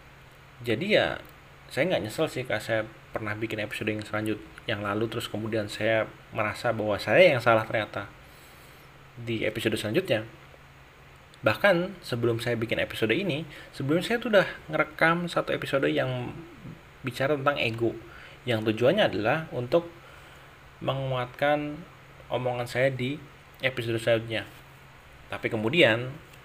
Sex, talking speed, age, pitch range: male, 125 wpm, 30-49, 110-135 Hz